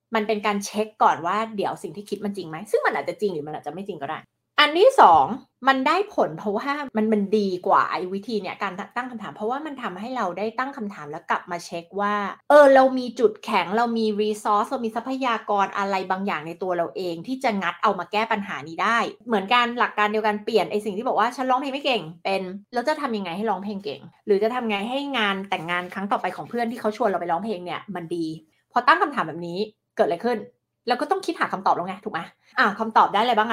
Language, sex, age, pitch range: Thai, female, 20-39, 185-235 Hz